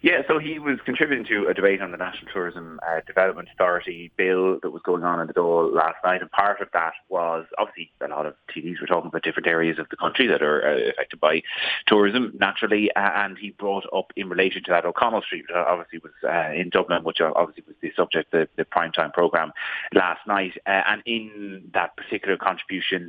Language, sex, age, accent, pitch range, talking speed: English, male, 30-49, British, 90-105 Hz, 220 wpm